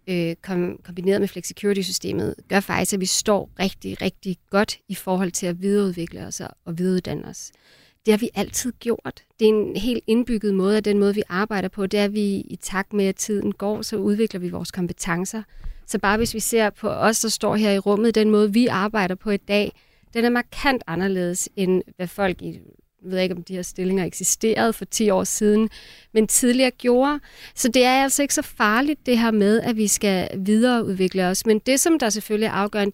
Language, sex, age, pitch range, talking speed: Danish, female, 30-49, 190-230 Hz, 210 wpm